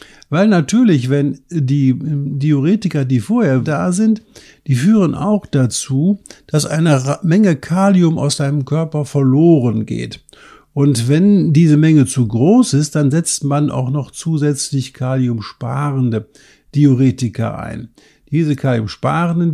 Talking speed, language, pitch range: 125 wpm, German, 130-160 Hz